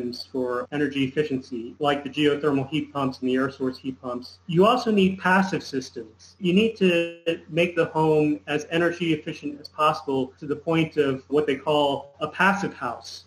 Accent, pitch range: American, 145-170 Hz